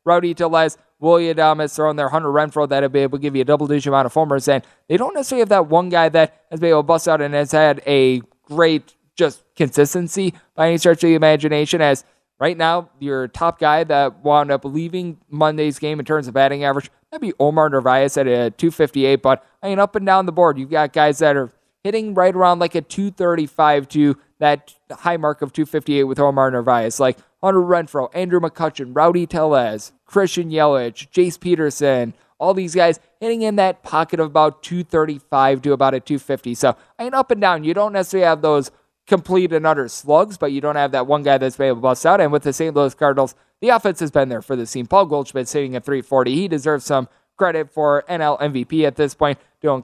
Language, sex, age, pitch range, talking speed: English, male, 20-39, 140-170 Hz, 220 wpm